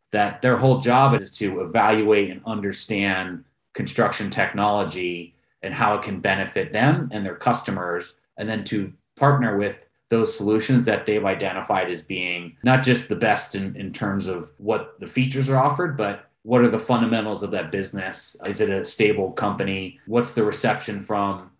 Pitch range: 95-120 Hz